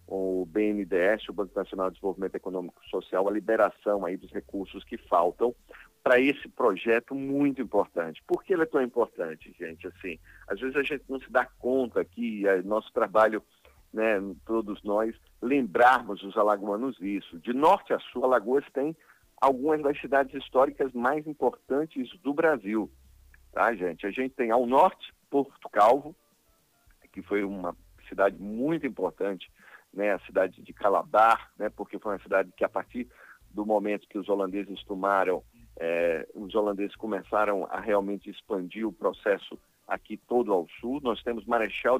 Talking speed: 155 wpm